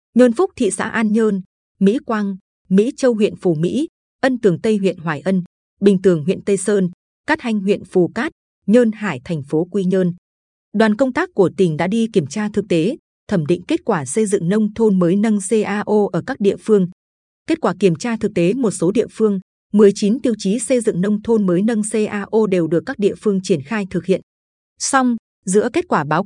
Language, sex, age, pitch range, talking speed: Vietnamese, female, 20-39, 185-225 Hz, 215 wpm